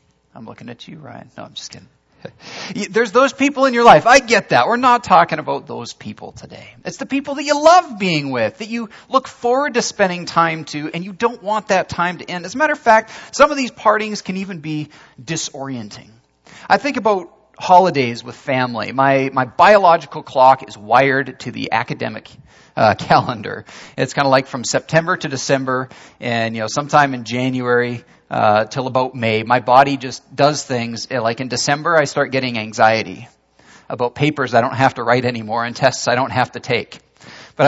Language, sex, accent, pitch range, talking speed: English, male, American, 125-185 Hz, 200 wpm